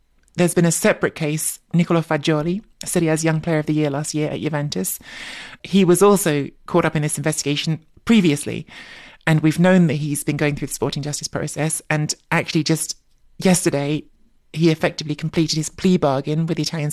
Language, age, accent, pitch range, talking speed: English, 20-39, British, 150-170 Hz, 185 wpm